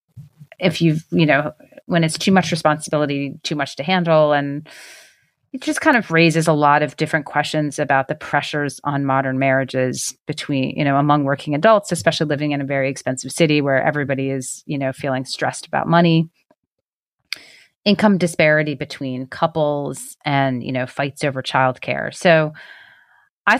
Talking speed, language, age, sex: 165 wpm, English, 30-49, female